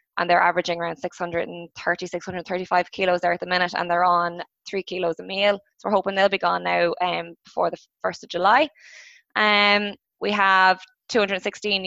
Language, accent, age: English, Irish, 20-39